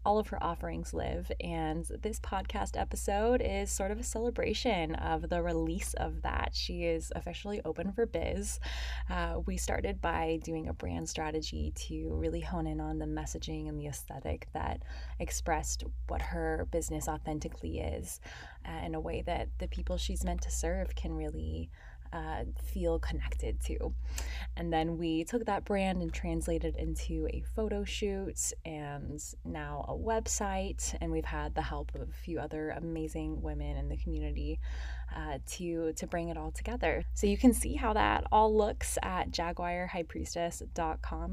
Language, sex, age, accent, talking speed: English, female, 20-39, American, 165 wpm